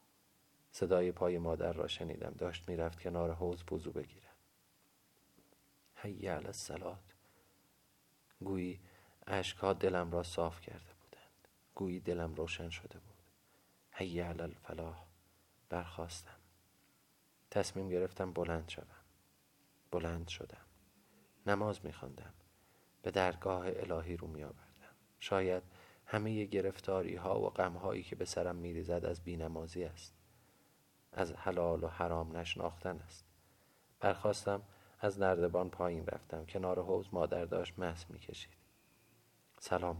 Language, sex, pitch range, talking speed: Persian, male, 85-95 Hz, 115 wpm